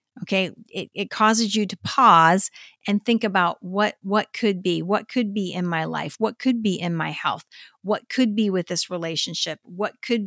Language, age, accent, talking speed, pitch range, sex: English, 50-69, American, 200 wpm, 180-215 Hz, female